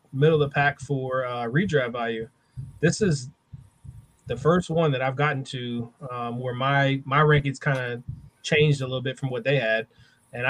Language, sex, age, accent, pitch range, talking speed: English, male, 20-39, American, 120-140 Hz, 190 wpm